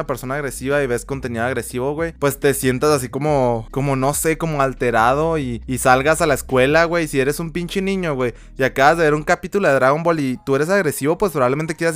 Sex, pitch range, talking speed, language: male, 120-155 Hz, 230 wpm, Spanish